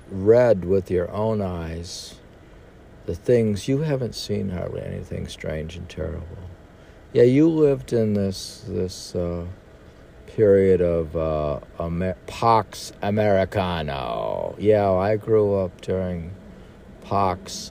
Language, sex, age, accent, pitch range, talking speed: English, male, 60-79, American, 90-115 Hz, 115 wpm